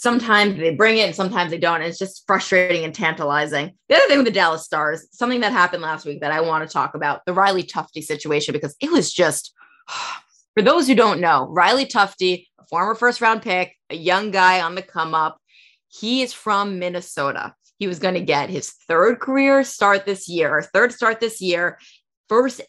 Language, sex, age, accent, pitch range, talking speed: English, female, 20-39, American, 165-220 Hz, 205 wpm